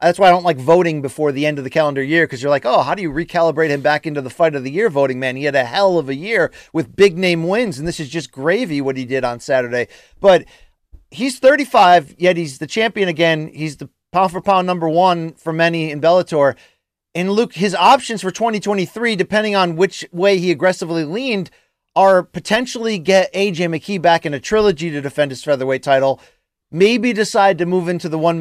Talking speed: 220 wpm